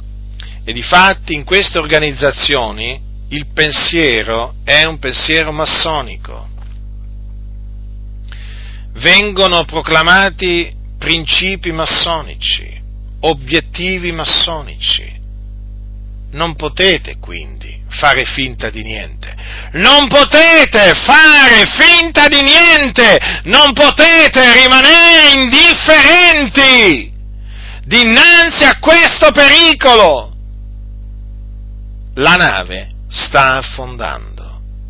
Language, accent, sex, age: Italian, native, male, 50-69